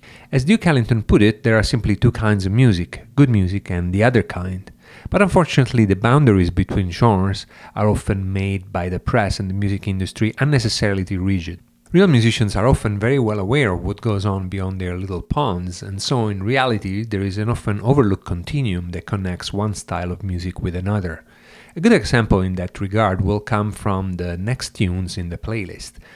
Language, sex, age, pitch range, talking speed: English, male, 40-59, 95-115 Hz, 195 wpm